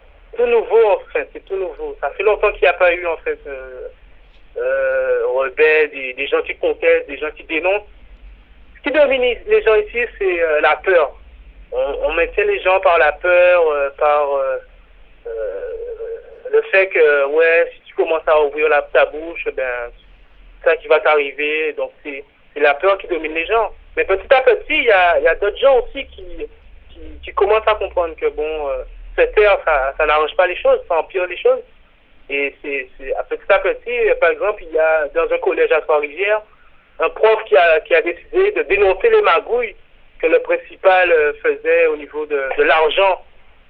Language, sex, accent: French, male, French